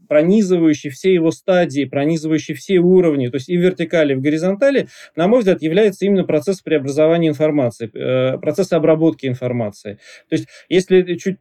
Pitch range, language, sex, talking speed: 150-185 Hz, Russian, male, 160 wpm